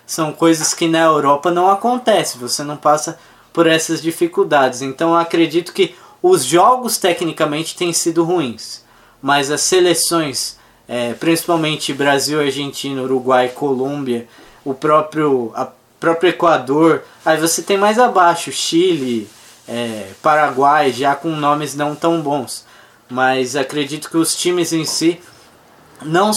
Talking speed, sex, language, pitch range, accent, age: 125 wpm, male, English, 140-175 Hz, Brazilian, 20-39